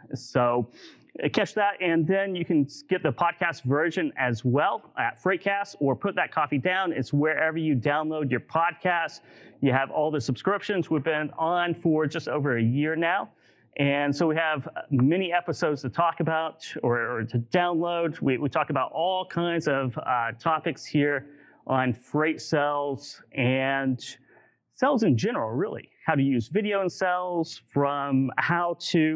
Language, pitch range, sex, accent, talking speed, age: English, 135-170 Hz, male, American, 165 wpm, 30-49